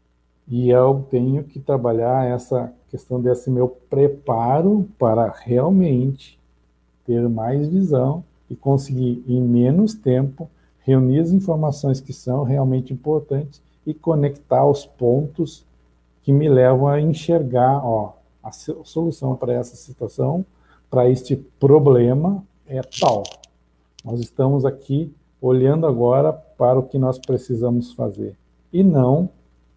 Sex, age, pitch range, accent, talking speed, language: male, 50-69, 115-140 Hz, Brazilian, 120 wpm, Portuguese